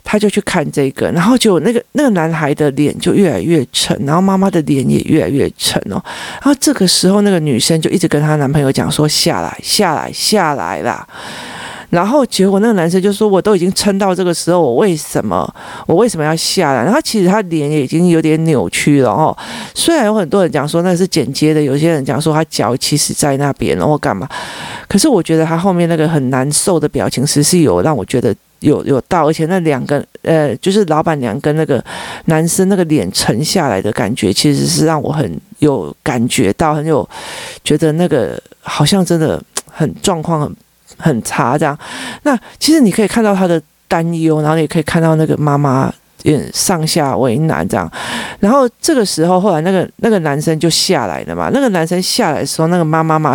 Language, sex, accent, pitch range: Chinese, male, native, 150-190 Hz